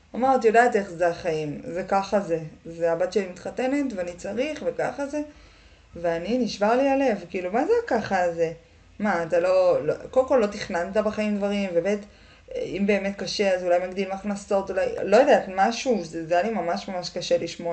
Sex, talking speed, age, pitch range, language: female, 190 wpm, 20-39, 185-255 Hz, Hebrew